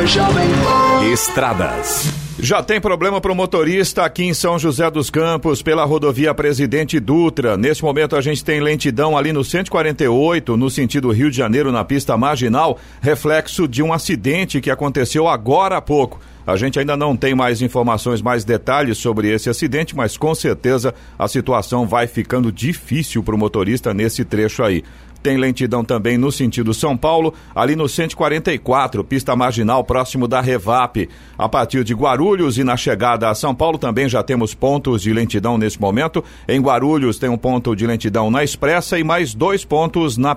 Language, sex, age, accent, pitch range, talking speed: Portuguese, male, 50-69, Brazilian, 120-155 Hz, 170 wpm